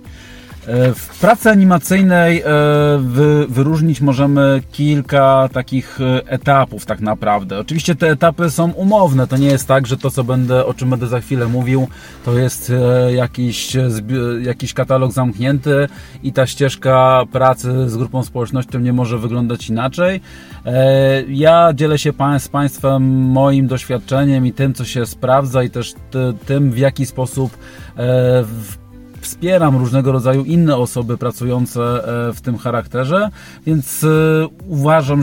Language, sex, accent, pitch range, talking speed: Polish, male, native, 125-145 Hz, 130 wpm